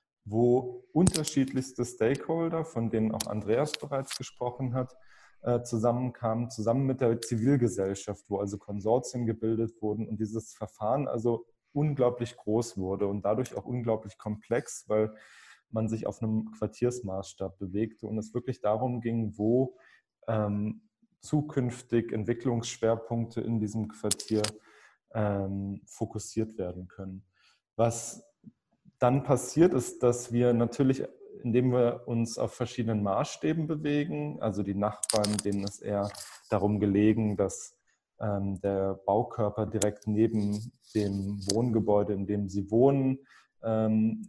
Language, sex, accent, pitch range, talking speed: German, male, German, 105-120 Hz, 120 wpm